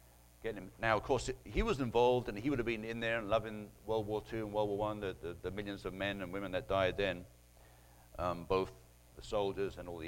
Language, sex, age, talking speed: English, male, 60-79, 250 wpm